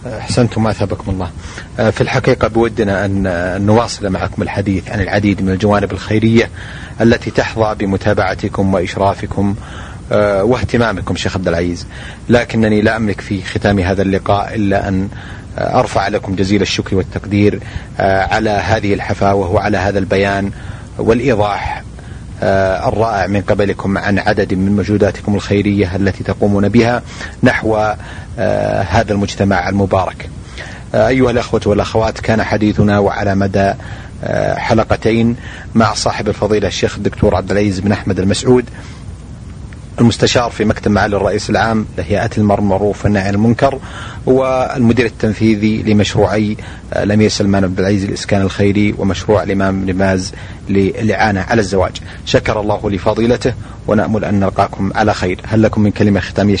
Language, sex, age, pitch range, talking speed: Arabic, male, 30-49, 95-110 Hz, 125 wpm